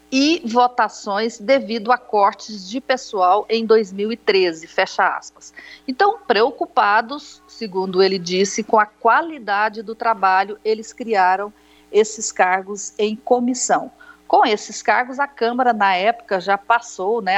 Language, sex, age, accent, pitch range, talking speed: Portuguese, female, 50-69, Brazilian, 195-255 Hz, 130 wpm